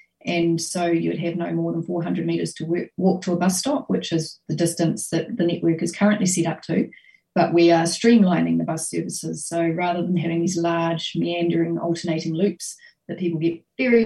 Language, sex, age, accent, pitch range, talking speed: English, female, 30-49, Australian, 165-195 Hz, 200 wpm